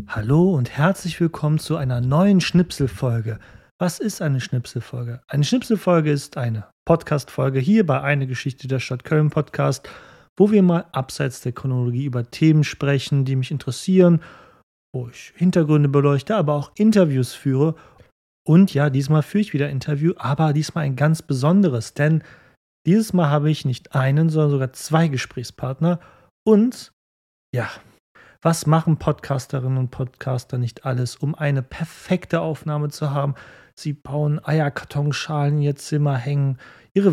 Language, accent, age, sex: German, German, 30-49, male